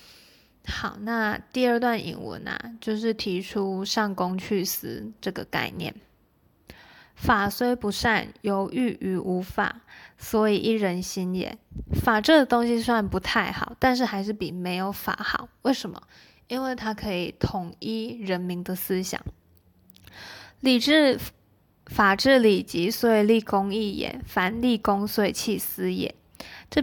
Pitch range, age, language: 185-230 Hz, 20-39, Chinese